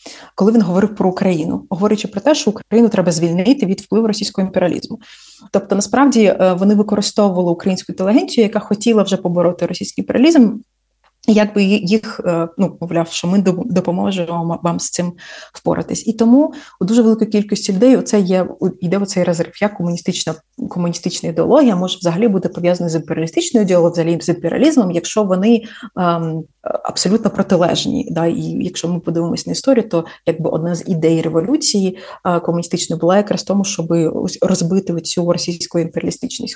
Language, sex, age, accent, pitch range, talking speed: Ukrainian, female, 30-49, native, 175-220 Hz, 155 wpm